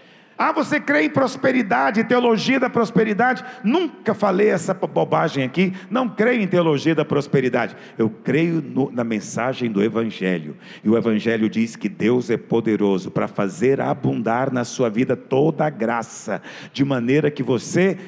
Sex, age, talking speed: male, 50-69, 155 wpm